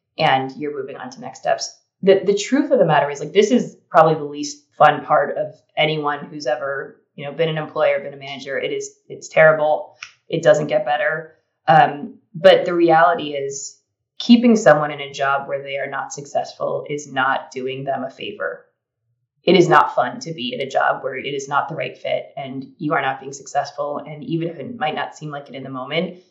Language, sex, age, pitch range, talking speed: English, female, 20-39, 140-160 Hz, 220 wpm